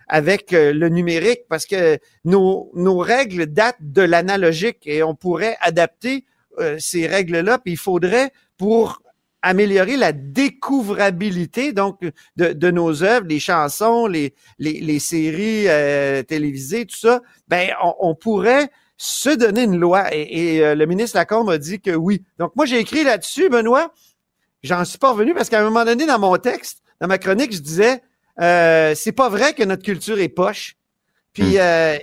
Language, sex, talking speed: French, male, 170 wpm